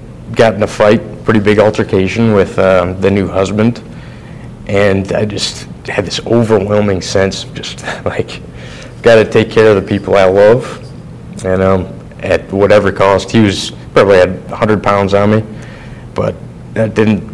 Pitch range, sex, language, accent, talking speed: 95-110 Hz, male, English, American, 165 wpm